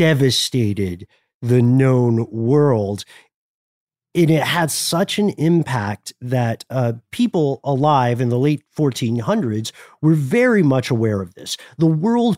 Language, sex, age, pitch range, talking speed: English, male, 50-69, 120-175 Hz, 125 wpm